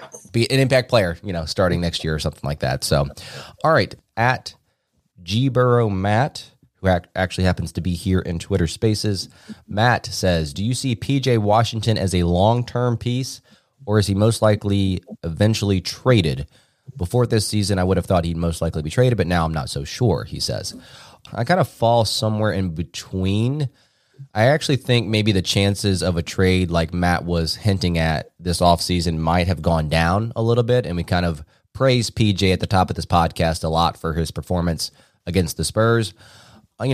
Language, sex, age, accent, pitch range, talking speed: English, male, 20-39, American, 85-110 Hz, 195 wpm